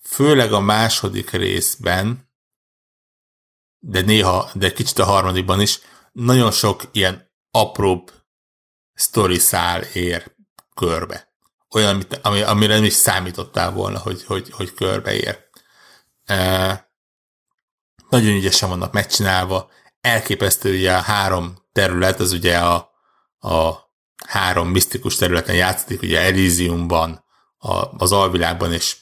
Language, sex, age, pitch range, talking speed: Hungarian, male, 60-79, 90-110 Hz, 110 wpm